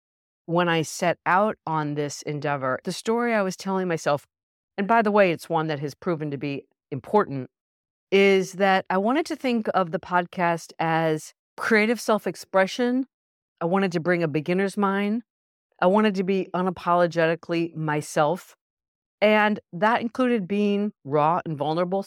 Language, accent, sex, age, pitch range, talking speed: English, American, female, 50-69, 155-190 Hz, 155 wpm